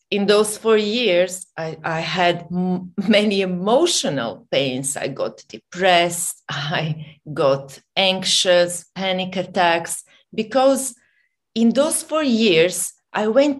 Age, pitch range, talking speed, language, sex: 40-59, 175-230 Hz, 110 wpm, English, female